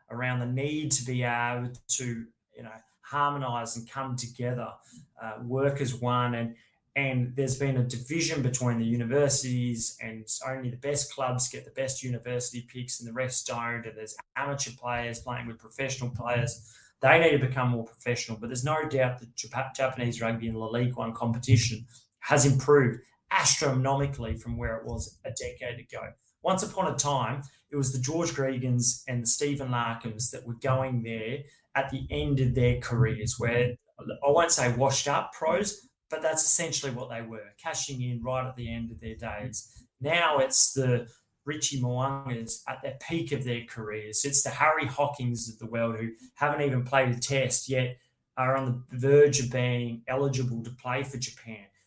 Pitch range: 120-135 Hz